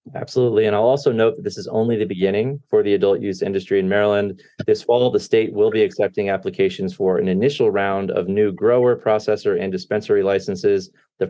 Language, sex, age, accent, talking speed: English, male, 30-49, American, 200 wpm